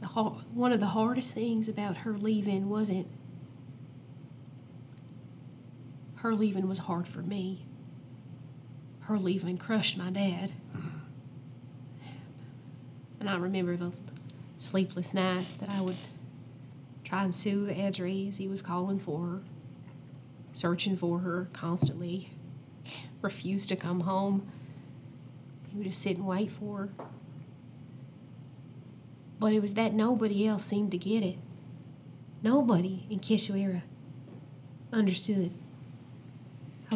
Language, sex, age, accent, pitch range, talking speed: English, female, 30-49, American, 135-200 Hz, 115 wpm